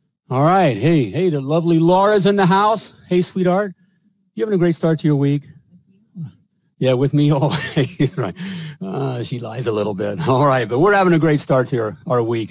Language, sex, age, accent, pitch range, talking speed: English, male, 40-59, American, 120-170 Hz, 210 wpm